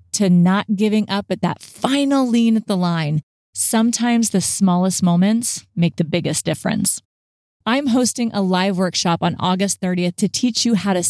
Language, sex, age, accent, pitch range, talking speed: English, female, 30-49, American, 180-220 Hz, 175 wpm